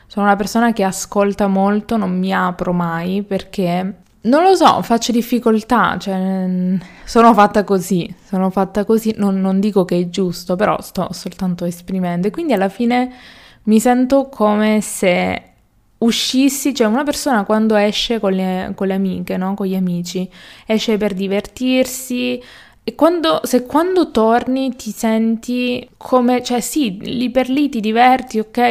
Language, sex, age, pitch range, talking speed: Italian, female, 20-39, 190-230 Hz, 155 wpm